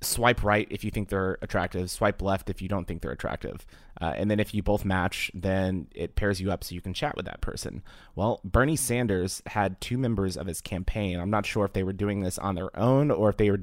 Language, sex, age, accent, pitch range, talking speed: English, male, 30-49, American, 90-105 Hz, 255 wpm